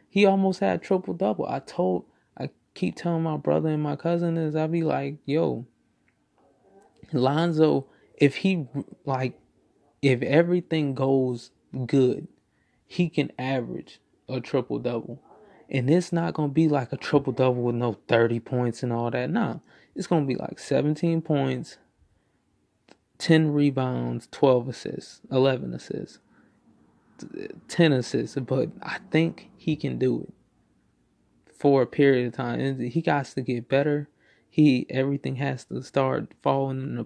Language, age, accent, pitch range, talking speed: English, 20-39, American, 125-155 Hz, 150 wpm